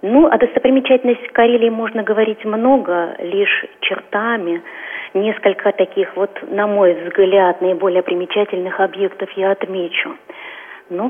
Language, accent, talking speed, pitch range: Russian, native, 115 wpm, 190-235 Hz